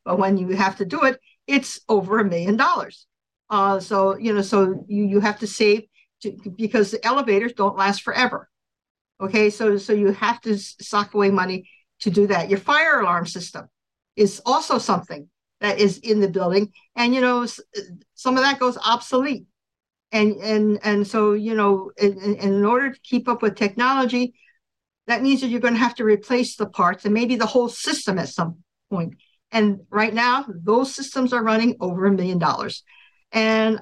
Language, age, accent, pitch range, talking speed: English, 50-69, American, 205-245 Hz, 190 wpm